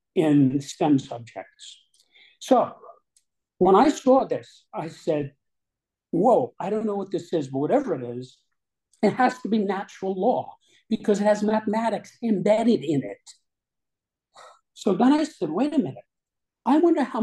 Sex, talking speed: male, 155 wpm